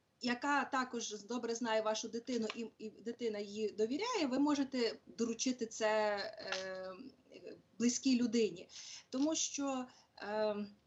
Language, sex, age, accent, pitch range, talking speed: Ukrainian, female, 30-49, native, 210-255 Hz, 115 wpm